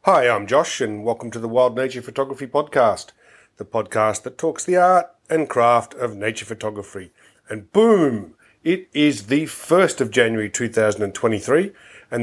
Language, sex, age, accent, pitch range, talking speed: English, male, 40-59, Australian, 115-135 Hz, 155 wpm